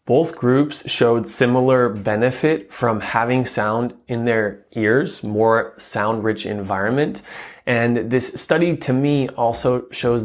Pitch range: 110-130 Hz